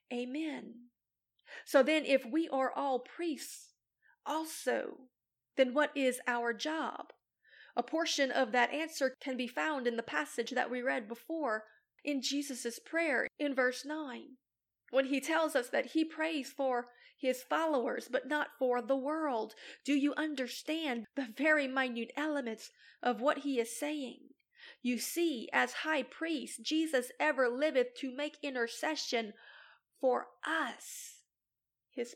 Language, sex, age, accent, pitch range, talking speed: English, female, 40-59, American, 245-305 Hz, 140 wpm